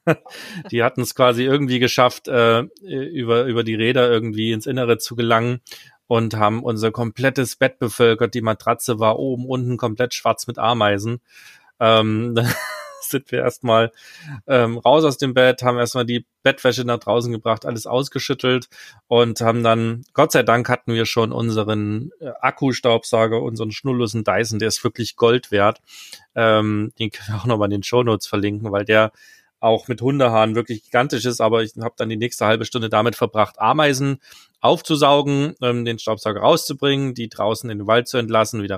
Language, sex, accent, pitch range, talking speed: German, male, German, 110-125 Hz, 170 wpm